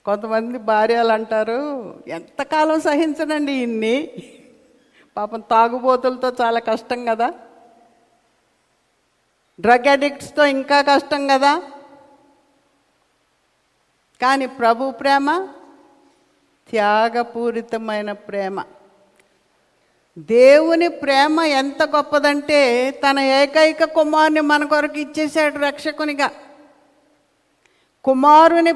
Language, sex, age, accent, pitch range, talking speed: Telugu, female, 50-69, native, 255-315 Hz, 70 wpm